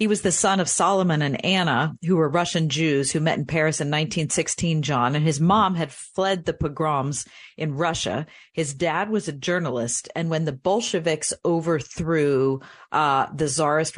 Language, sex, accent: English, female, American